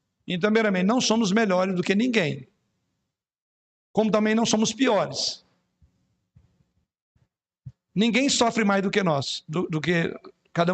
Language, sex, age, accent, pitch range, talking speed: Portuguese, male, 60-79, Brazilian, 190-235 Hz, 130 wpm